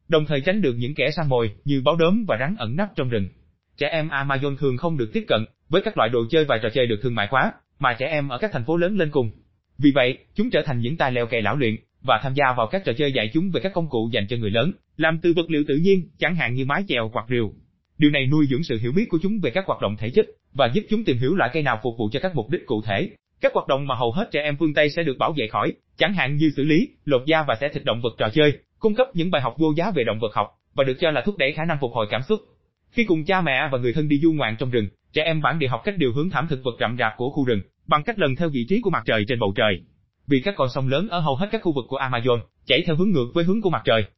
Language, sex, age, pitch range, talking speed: Vietnamese, male, 20-39, 125-170 Hz, 315 wpm